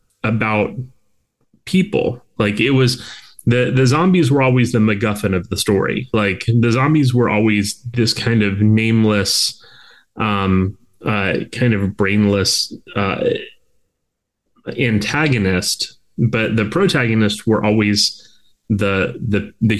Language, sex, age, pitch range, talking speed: English, male, 30-49, 100-120 Hz, 120 wpm